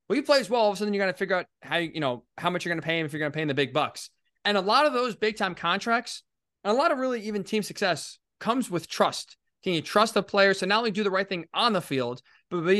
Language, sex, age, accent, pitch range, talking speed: English, male, 20-39, American, 170-220 Hz, 320 wpm